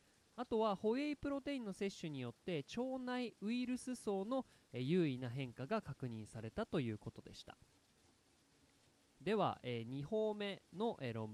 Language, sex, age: Japanese, male, 20-39